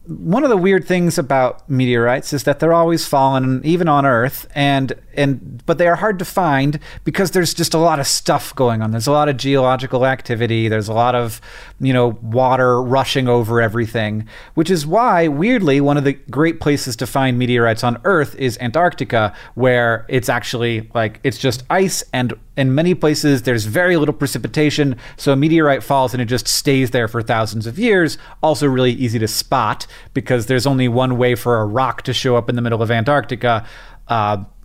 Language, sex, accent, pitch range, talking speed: English, male, American, 120-150 Hz, 195 wpm